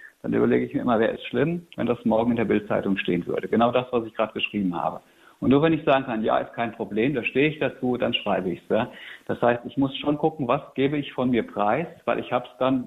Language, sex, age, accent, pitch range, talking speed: German, male, 60-79, German, 115-145 Hz, 275 wpm